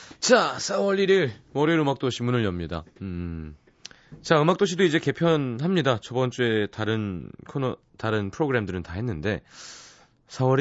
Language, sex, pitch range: Korean, male, 90-145 Hz